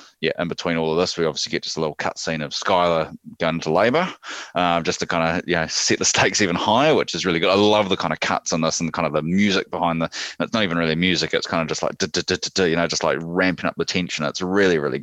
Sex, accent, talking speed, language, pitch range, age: male, Australian, 290 wpm, English, 80-85 Hz, 20-39